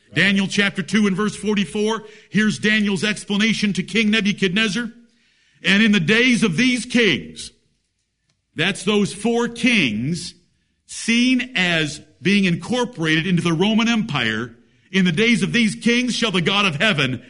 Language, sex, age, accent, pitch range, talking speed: English, male, 50-69, American, 185-230 Hz, 145 wpm